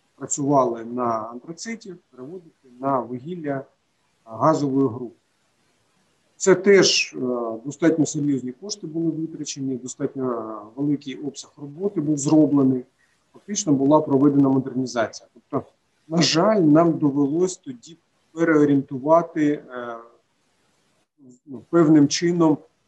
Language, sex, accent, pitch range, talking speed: Ukrainian, male, native, 130-160 Hz, 90 wpm